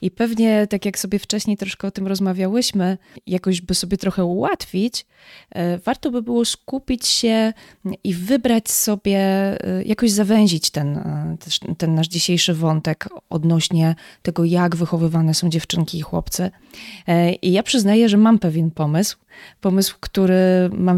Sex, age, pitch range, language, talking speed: female, 20-39, 180-220 Hz, Polish, 135 wpm